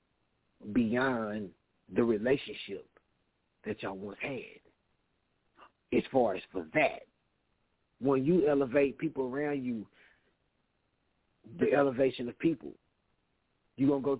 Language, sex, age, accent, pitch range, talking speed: English, male, 40-59, American, 135-185 Hz, 110 wpm